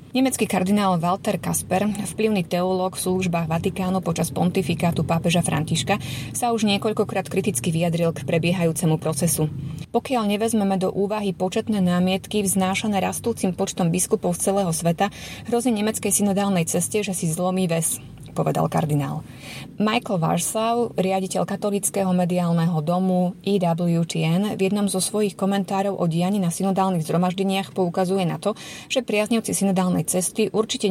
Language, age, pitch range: Slovak, 20-39, 170-205 Hz